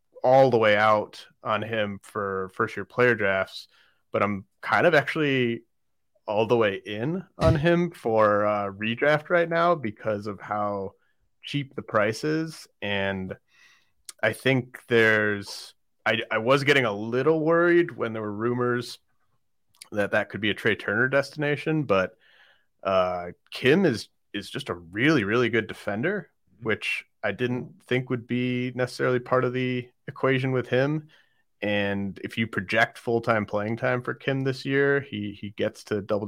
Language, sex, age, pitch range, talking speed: English, male, 30-49, 100-125 Hz, 160 wpm